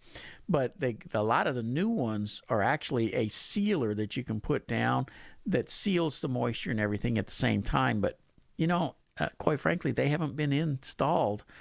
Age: 50-69